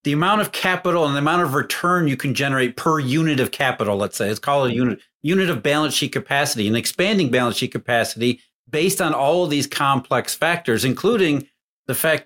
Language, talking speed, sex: English, 205 wpm, male